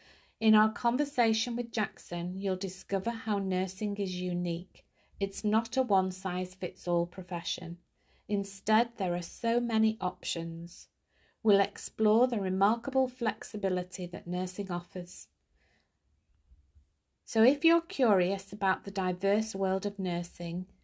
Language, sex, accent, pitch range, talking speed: English, female, British, 175-215 Hz, 115 wpm